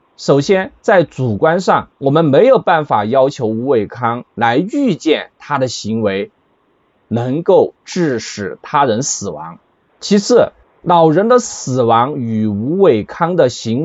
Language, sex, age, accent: Chinese, male, 20-39, native